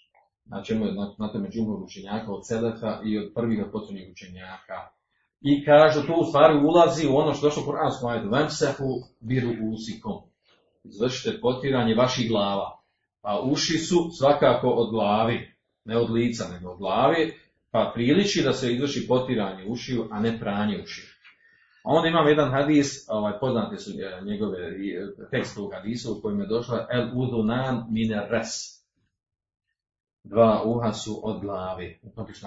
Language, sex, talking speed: Croatian, male, 140 wpm